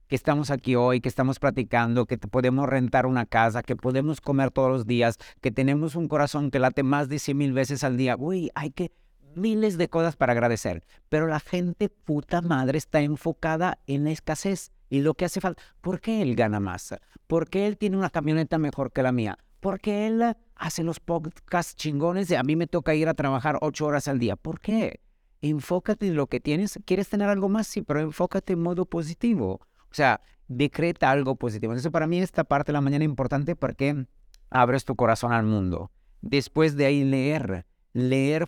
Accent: Mexican